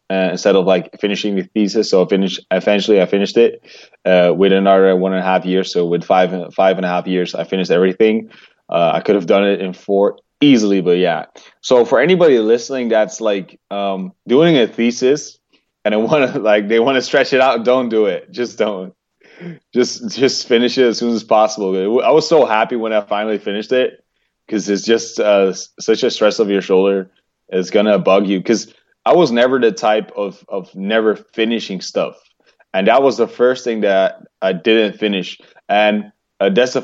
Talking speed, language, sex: 210 wpm, English, male